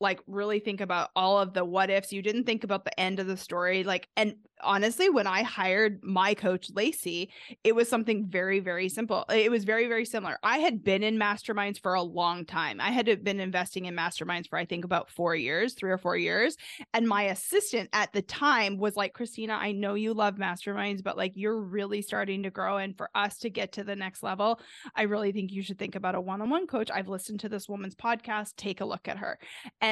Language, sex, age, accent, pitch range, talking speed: English, female, 20-39, American, 195-245 Hz, 230 wpm